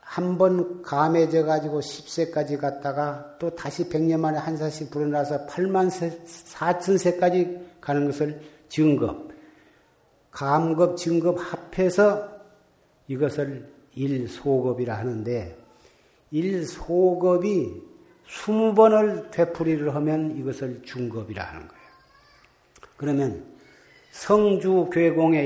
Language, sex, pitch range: Korean, male, 145-185 Hz